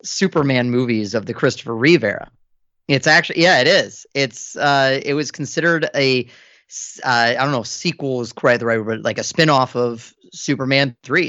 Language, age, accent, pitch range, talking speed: English, 30-49, American, 120-155 Hz, 180 wpm